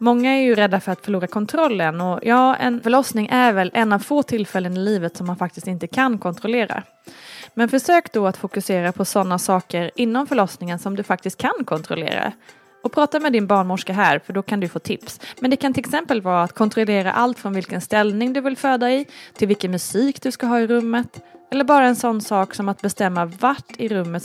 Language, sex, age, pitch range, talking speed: Swedish, female, 20-39, 185-250 Hz, 220 wpm